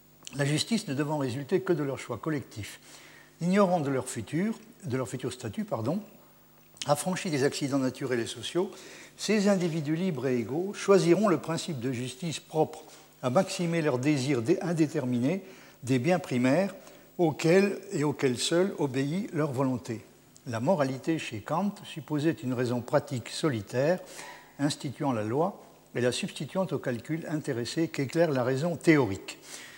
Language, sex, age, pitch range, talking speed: French, male, 60-79, 125-165 Hz, 145 wpm